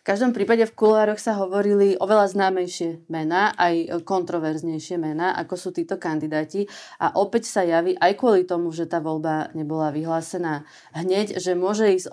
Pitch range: 165-205 Hz